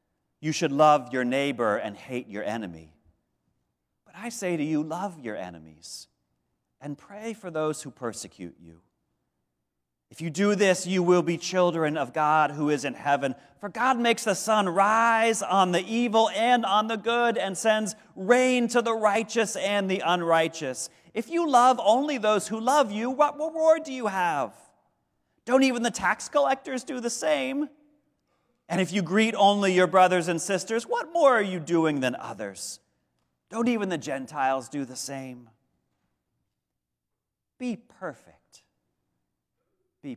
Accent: American